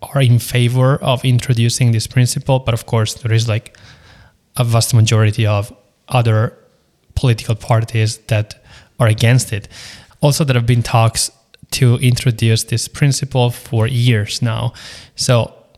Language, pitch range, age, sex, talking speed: English, 110-125 Hz, 20-39, male, 140 wpm